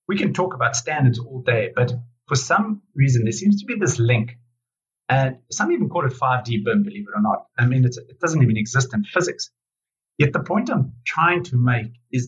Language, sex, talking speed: English, male, 225 wpm